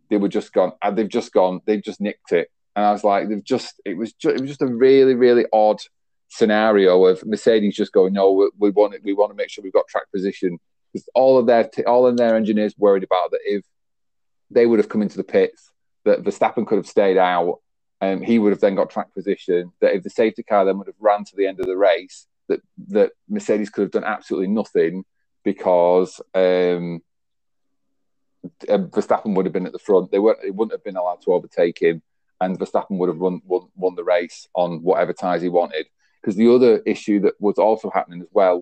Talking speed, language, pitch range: 230 wpm, English, 95-125 Hz